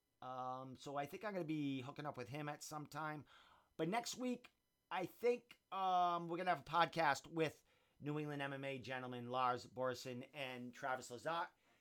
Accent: American